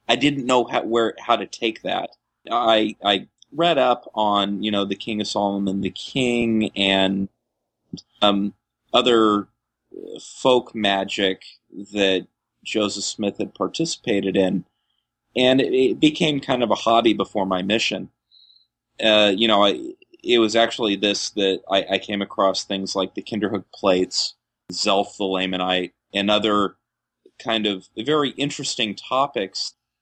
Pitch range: 100-120 Hz